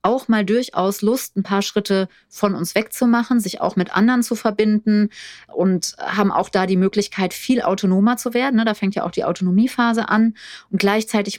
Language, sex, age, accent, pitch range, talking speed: German, female, 30-49, German, 180-220 Hz, 185 wpm